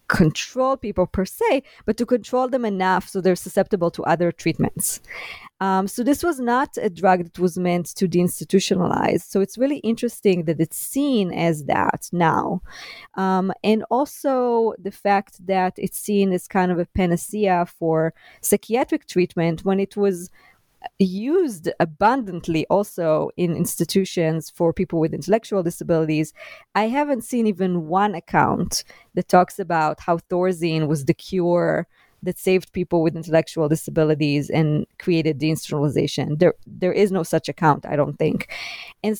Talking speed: 150 wpm